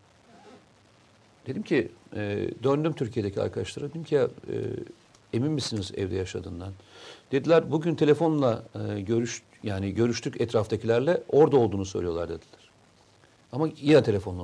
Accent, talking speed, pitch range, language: native, 110 wpm, 110-145 Hz, Turkish